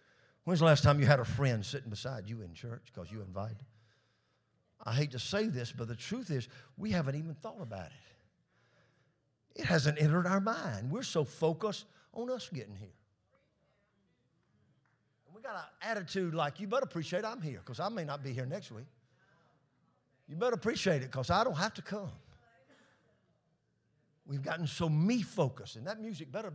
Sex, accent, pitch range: male, American, 115-165 Hz